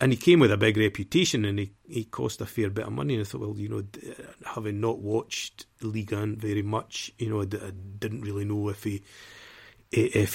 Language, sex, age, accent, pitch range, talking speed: English, male, 30-49, British, 100-110 Hz, 215 wpm